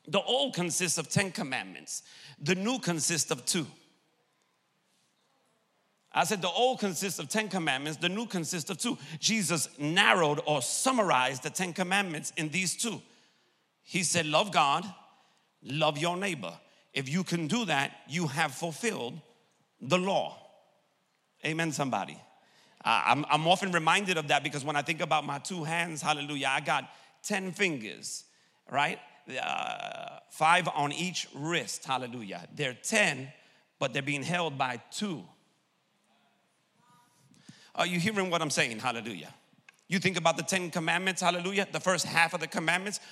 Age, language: 40-59, English